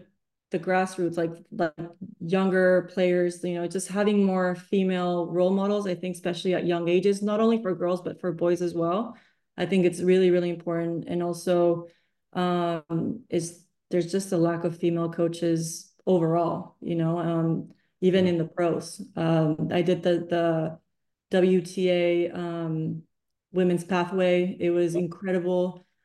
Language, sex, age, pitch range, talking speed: English, female, 20-39, 170-185 Hz, 150 wpm